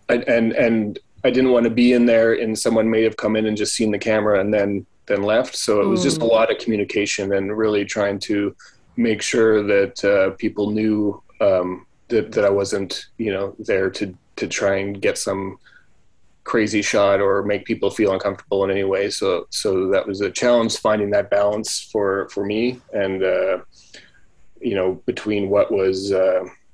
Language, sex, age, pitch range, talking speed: English, male, 20-39, 100-115 Hz, 195 wpm